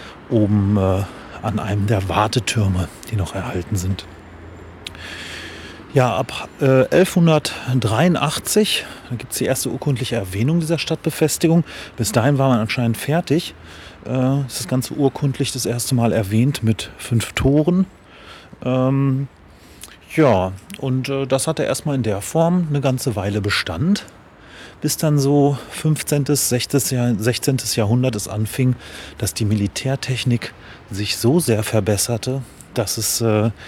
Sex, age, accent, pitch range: male, 30-49, German, 105-135 Hz